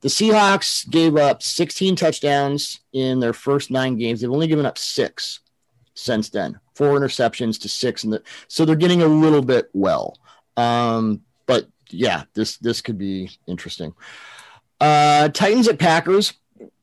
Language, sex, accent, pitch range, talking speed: English, male, American, 115-155 Hz, 155 wpm